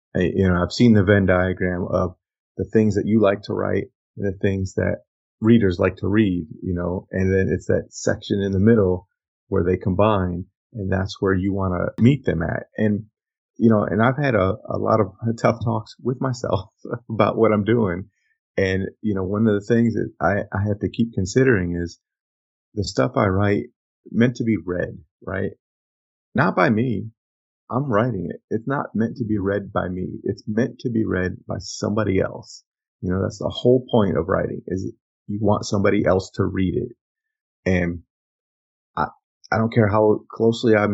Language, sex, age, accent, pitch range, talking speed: English, male, 30-49, American, 95-115 Hz, 195 wpm